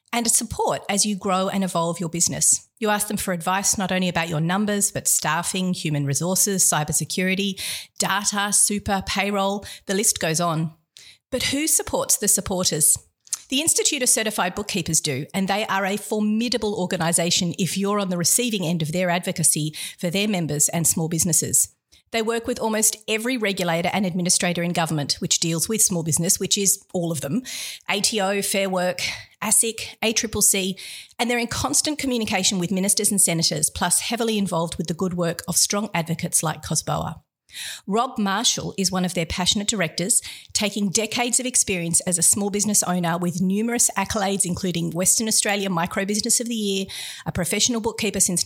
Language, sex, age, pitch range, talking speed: English, female, 40-59, 170-210 Hz, 175 wpm